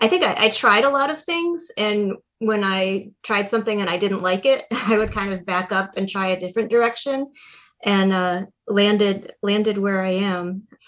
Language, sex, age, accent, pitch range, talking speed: English, female, 30-49, American, 180-215 Hz, 205 wpm